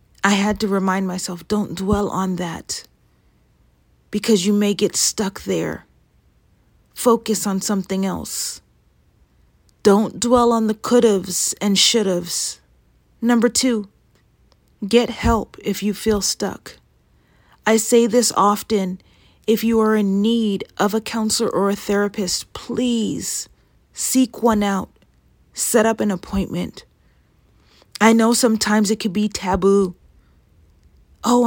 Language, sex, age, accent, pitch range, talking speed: English, female, 30-49, American, 190-225 Hz, 125 wpm